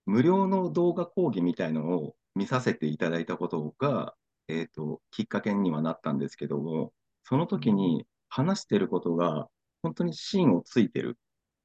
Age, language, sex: 40-59, Japanese, male